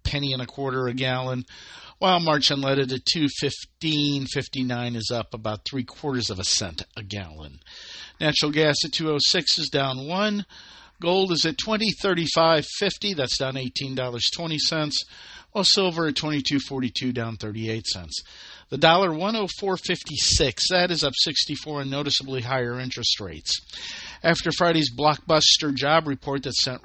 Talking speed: 145 wpm